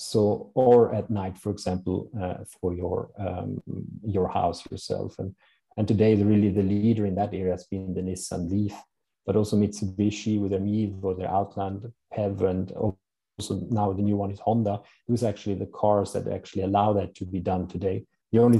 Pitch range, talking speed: 95-110 Hz, 195 wpm